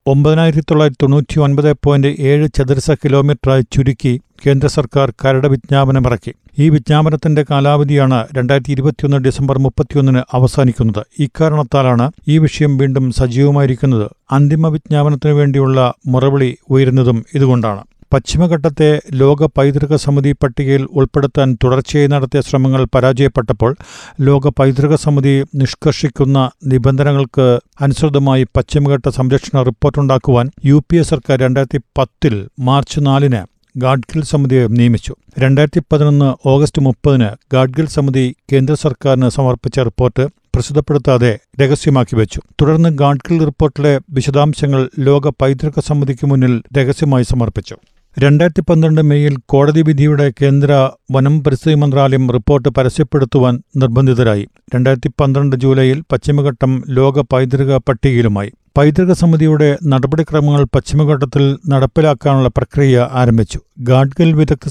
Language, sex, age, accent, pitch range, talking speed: Malayalam, male, 50-69, native, 130-150 Hz, 105 wpm